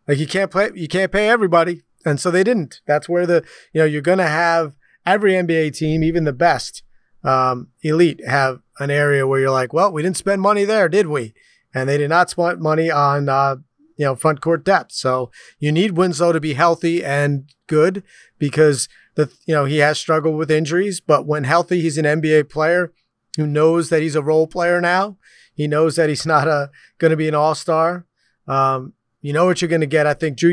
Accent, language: American, English